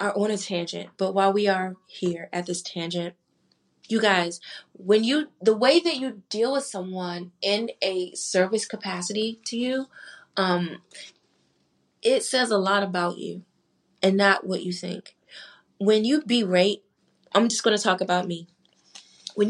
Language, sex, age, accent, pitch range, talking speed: English, female, 20-39, American, 185-240 Hz, 160 wpm